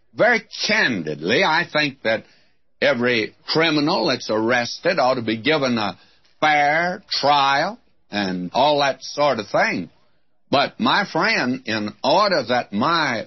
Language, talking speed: English, 130 wpm